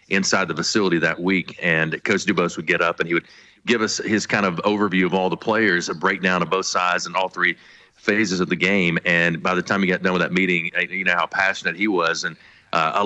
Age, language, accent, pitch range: 40-59, English, American, 85-95 Hz